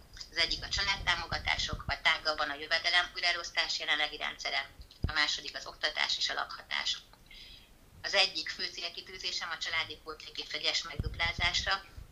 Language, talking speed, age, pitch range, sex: Hungarian, 135 wpm, 30-49, 150-170 Hz, female